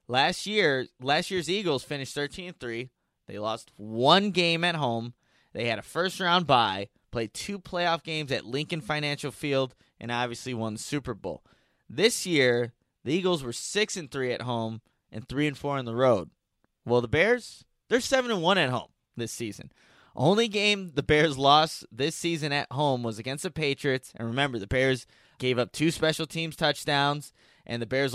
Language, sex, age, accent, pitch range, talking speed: English, male, 20-39, American, 125-170 Hz, 190 wpm